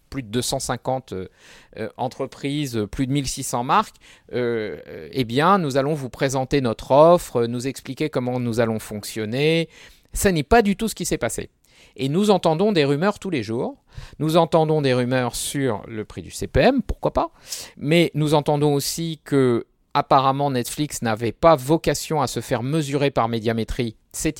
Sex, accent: male, French